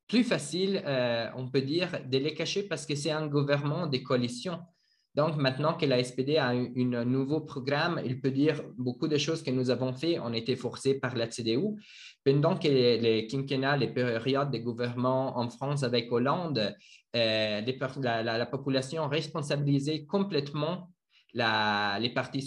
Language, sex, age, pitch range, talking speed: English, male, 20-39, 120-145 Hz, 175 wpm